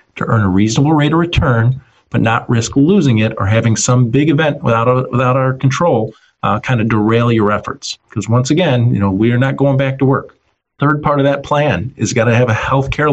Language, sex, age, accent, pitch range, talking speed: English, male, 40-59, American, 115-145 Hz, 230 wpm